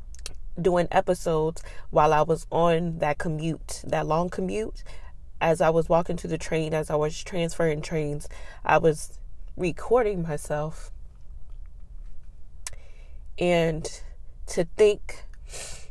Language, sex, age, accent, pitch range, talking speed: English, female, 20-39, American, 145-170 Hz, 115 wpm